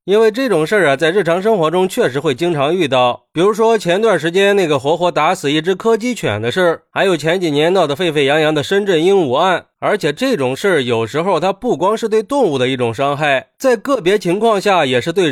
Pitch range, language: 140-185 Hz, Chinese